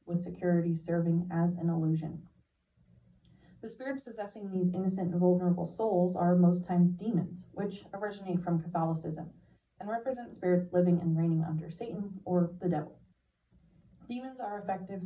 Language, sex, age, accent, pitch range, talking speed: English, female, 30-49, American, 170-195 Hz, 140 wpm